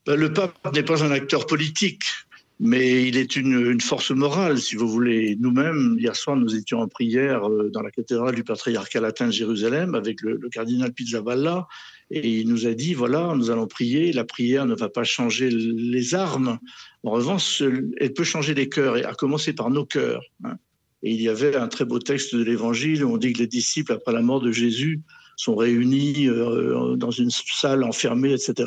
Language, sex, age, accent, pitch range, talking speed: French, male, 50-69, French, 120-145 Hz, 205 wpm